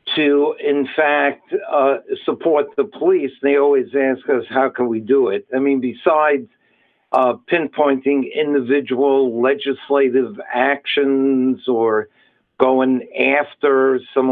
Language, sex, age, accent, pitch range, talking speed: English, male, 60-79, American, 130-170 Hz, 115 wpm